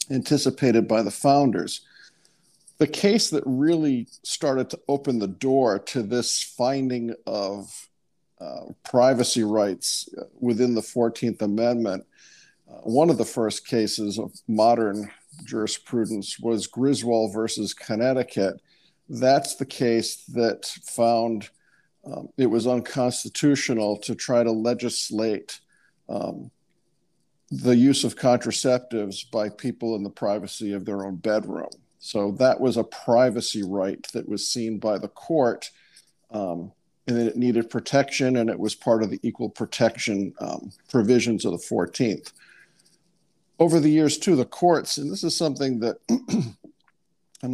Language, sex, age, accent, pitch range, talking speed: English, male, 50-69, American, 110-130 Hz, 135 wpm